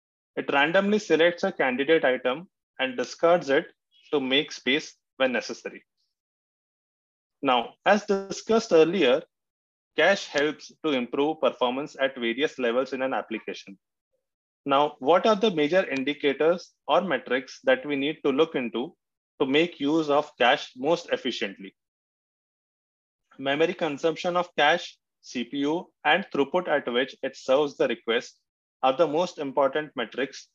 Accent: Indian